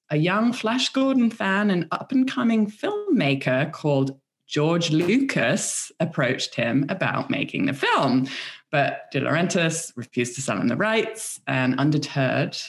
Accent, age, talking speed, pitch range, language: British, 20-39, 130 wpm, 130-170 Hz, English